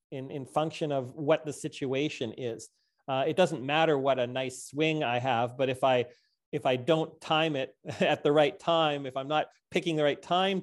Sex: male